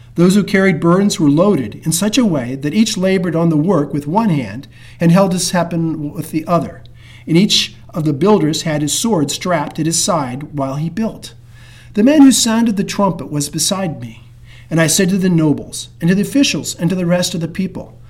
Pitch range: 135-200 Hz